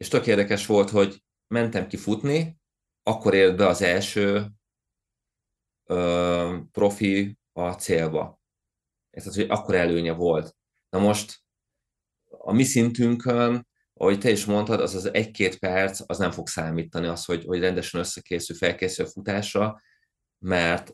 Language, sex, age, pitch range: Hungarian, male, 20-39, 90-105 Hz